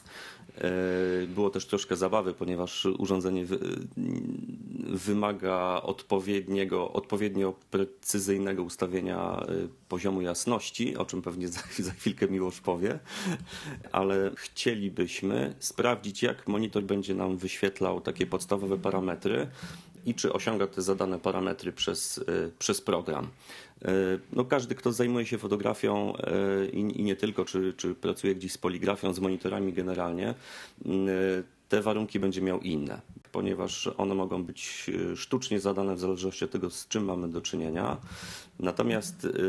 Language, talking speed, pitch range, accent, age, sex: Polish, 120 wpm, 90-100 Hz, native, 40-59, male